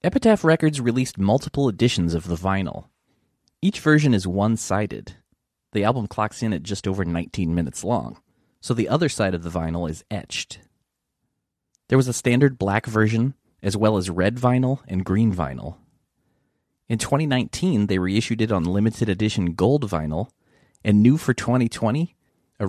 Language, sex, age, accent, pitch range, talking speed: English, male, 30-49, American, 95-130 Hz, 160 wpm